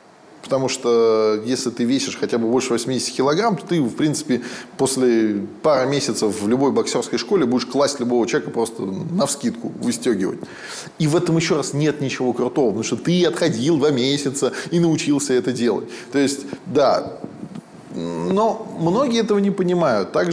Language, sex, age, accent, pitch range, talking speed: Russian, male, 20-39, native, 120-170 Hz, 160 wpm